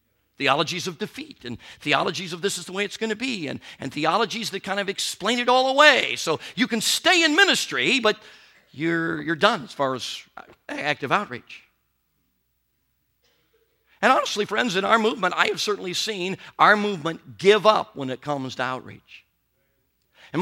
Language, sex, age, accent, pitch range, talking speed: English, male, 50-69, American, 195-285 Hz, 175 wpm